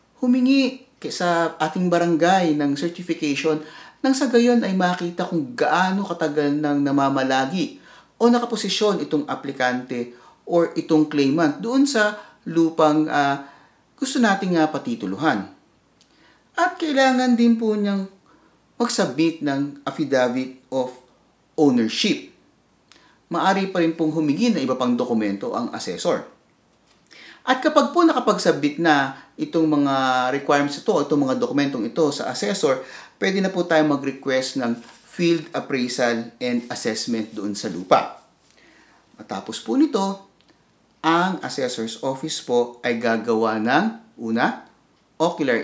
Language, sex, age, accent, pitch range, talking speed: English, male, 50-69, Filipino, 140-220 Hz, 120 wpm